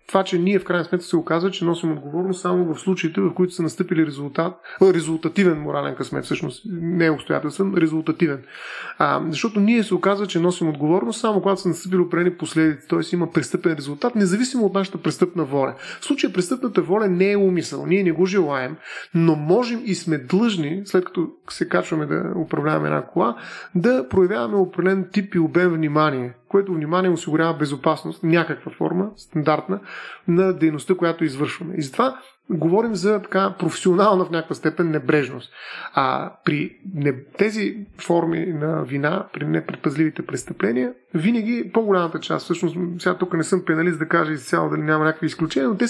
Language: Bulgarian